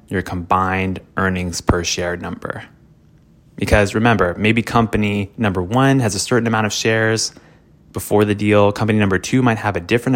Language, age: English, 20-39